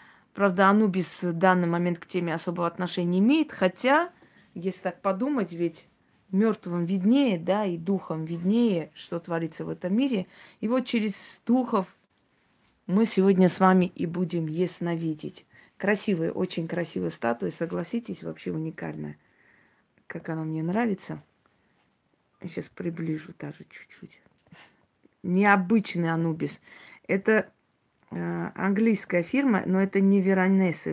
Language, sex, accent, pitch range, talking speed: Russian, female, native, 165-195 Hz, 120 wpm